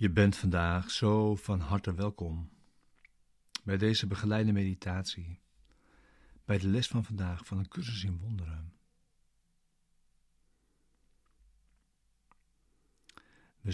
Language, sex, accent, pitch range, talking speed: Dutch, male, Dutch, 90-105 Hz, 95 wpm